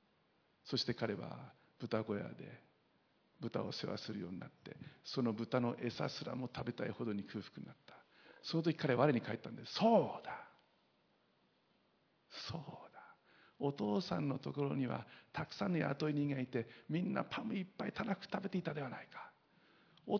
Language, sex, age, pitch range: Japanese, male, 60-79, 140-190 Hz